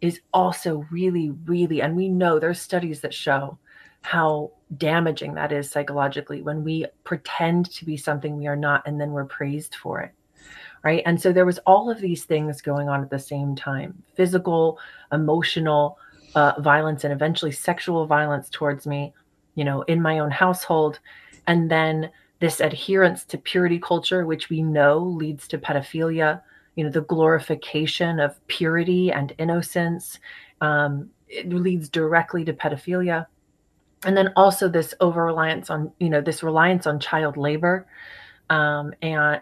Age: 30-49